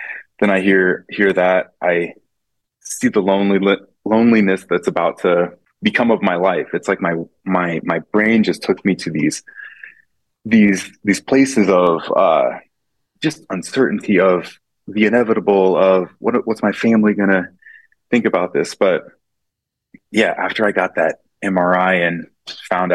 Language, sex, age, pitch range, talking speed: English, male, 20-39, 90-105 Hz, 145 wpm